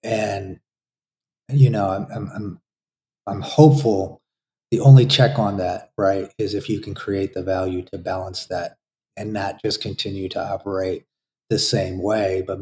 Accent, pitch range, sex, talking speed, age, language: American, 95-120 Hz, male, 160 wpm, 30-49, English